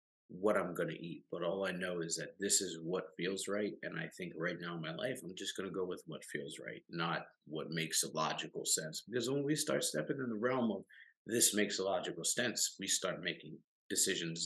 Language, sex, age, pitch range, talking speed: English, male, 50-69, 90-110 Hz, 235 wpm